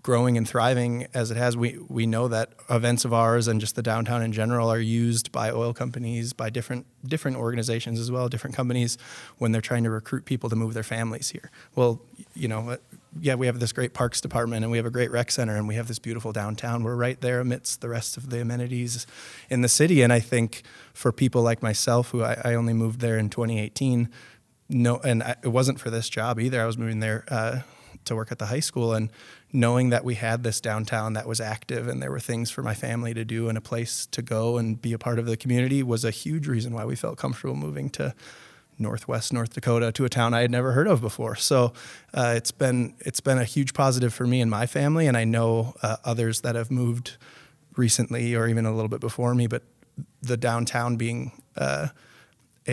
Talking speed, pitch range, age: 230 wpm, 115-125 Hz, 20-39